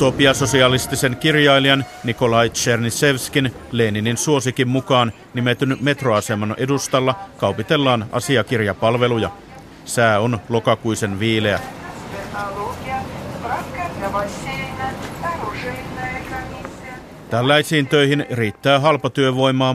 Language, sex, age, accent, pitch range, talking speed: Finnish, male, 50-69, native, 110-135 Hz, 60 wpm